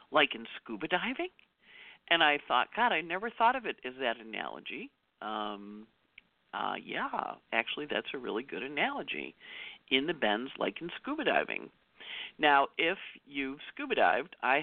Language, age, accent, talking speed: English, 50-69, American, 155 wpm